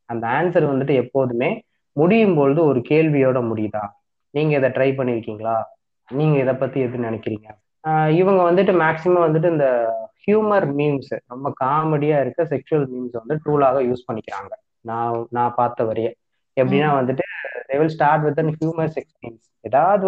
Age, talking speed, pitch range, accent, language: 20-39, 90 wpm, 125-155 Hz, native, Tamil